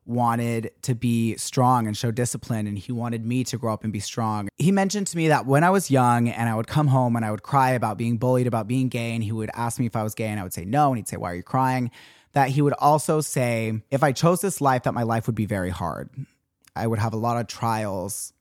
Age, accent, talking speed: 20-39, American, 280 wpm